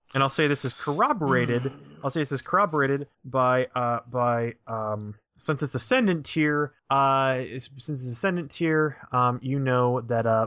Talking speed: 170 wpm